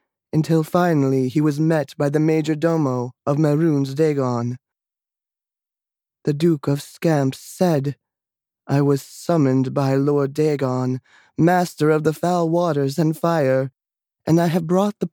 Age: 20-39